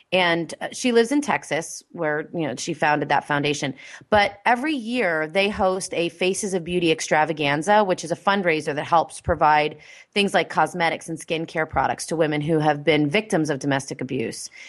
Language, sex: English, female